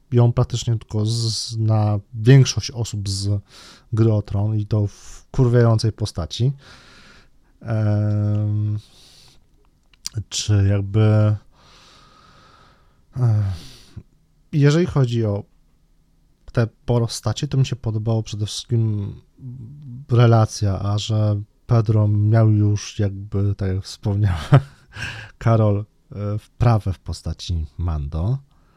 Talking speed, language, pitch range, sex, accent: 95 wpm, Polish, 105-120 Hz, male, native